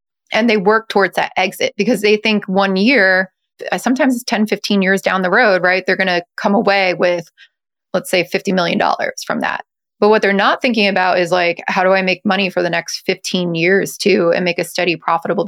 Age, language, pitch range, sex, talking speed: 20-39, English, 180-215 Hz, female, 215 wpm